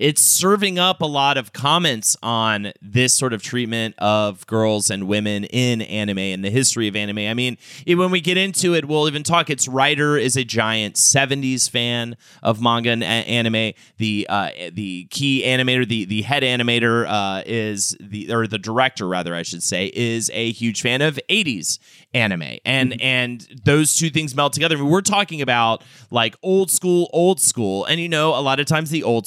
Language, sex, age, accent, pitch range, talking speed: English, male, 30-49, American, 115-150 Hz, 195 wpm